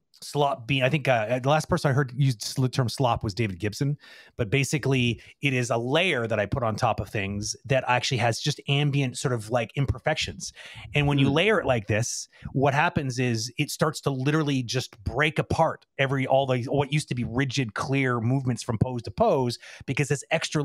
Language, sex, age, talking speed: English, male, 30-49, 210 wpm